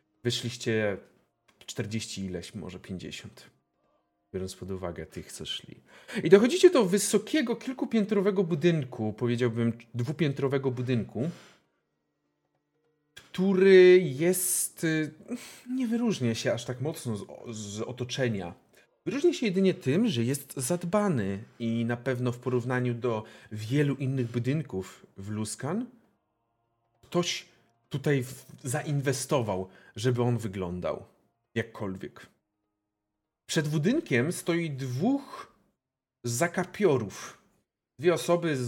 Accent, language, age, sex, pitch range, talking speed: native, Polish, 40-59, male, 115-175 Hz, 100 wpm